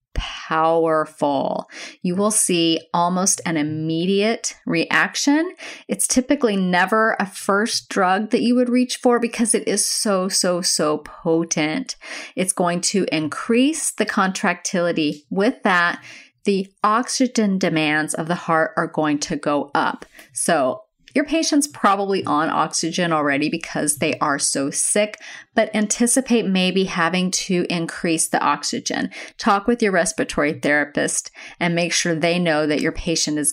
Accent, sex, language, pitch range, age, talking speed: American, female, English, 160-215 Hz, 30-49, 140 wpm